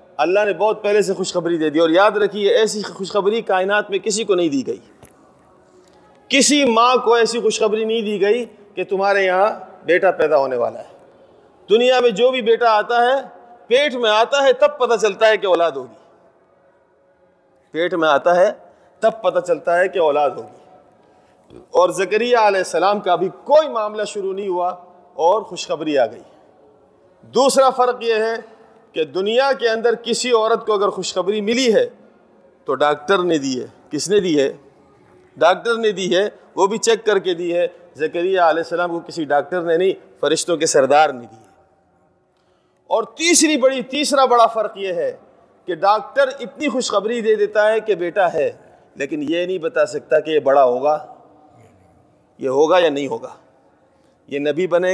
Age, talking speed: 30-49, 180 wpm